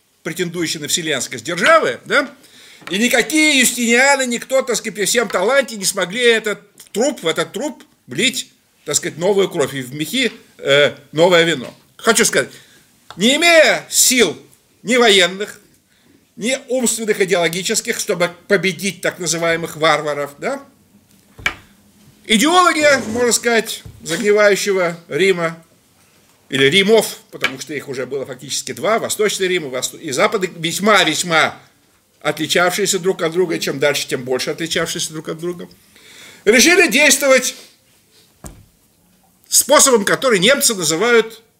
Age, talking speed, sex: 50-69, 130 wpm, male